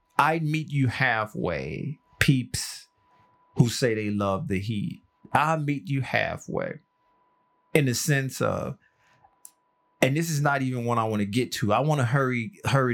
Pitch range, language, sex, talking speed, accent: 115-155 Hz, English, male, 160 wpm, American